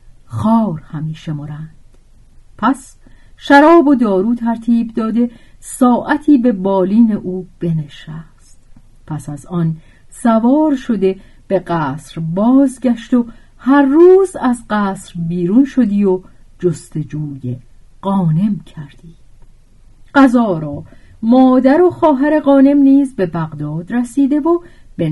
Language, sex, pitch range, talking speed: Persian, female, 155-245 Hz, 110 wpm